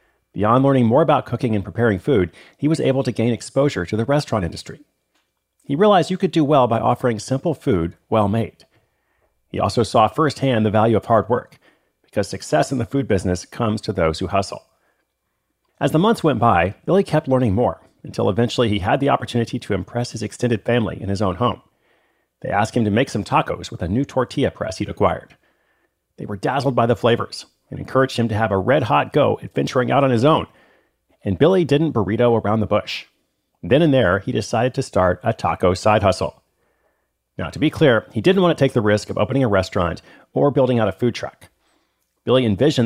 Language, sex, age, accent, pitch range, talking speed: English, male, 40-59, American, 105-135 Hz, 205 wpm